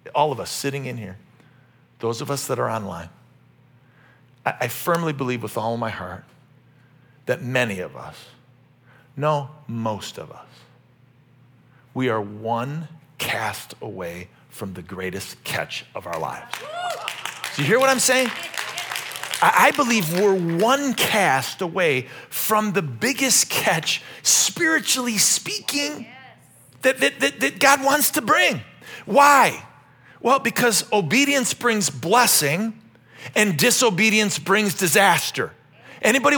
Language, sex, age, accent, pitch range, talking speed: English, male, 40-59, American, 130-215 Hz, 125 wpm